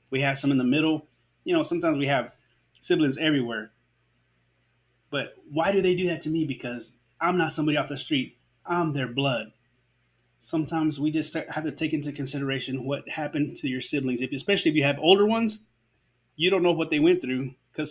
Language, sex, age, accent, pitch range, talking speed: English, male, 20-39, American, 130-180 Hz, 200 wpm